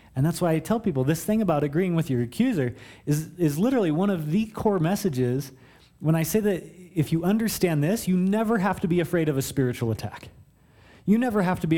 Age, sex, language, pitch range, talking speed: 30-49, male, English, 125-170 Hz, 225 wpm